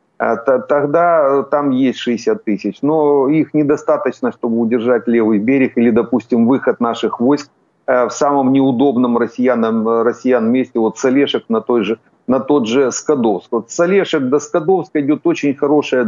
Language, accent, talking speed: Ukrainian, native, 135 wpm